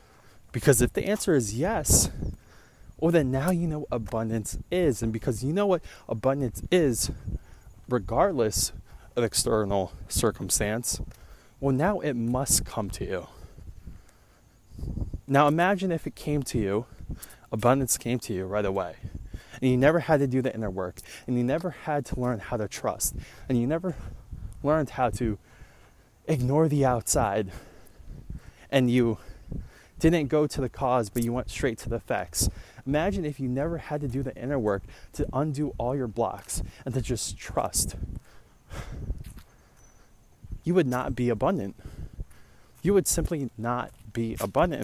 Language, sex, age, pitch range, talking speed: English, male, 20-39, 105-140 Hz, 155 wpm